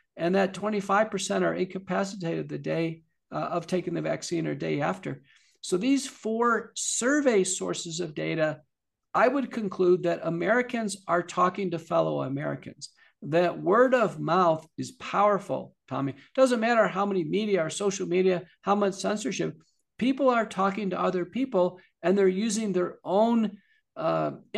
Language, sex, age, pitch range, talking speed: English, male, 50-69, 160-200 Hz, 150 wpm